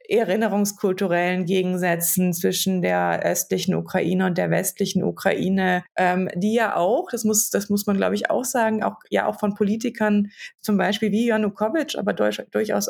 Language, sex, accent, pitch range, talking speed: German, female, German, 185-215 Hz, 165 wpm